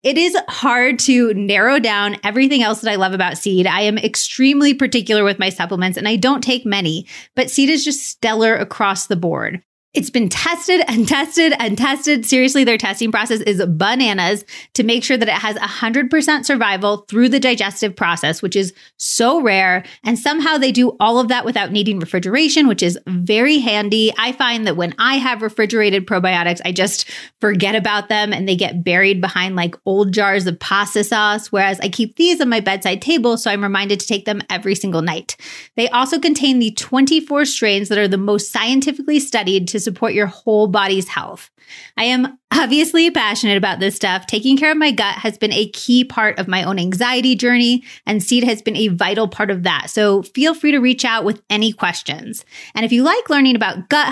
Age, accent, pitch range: 30-49, American, 200-255 Hz